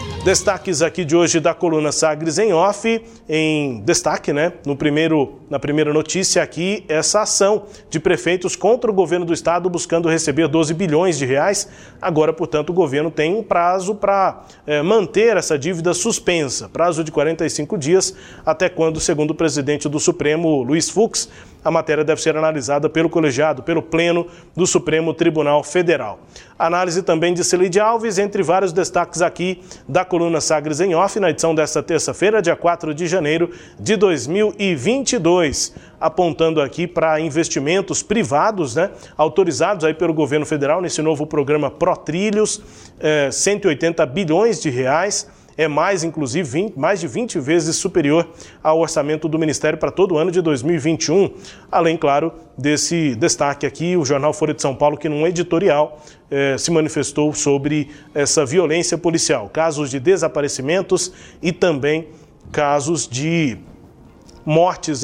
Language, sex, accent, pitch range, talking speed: Portuguese, male, Brazilian, 150-180 Hz, 150 wpm